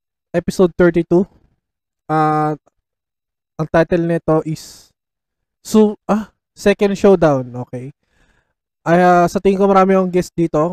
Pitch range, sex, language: 145-175 Hz, male, Filipino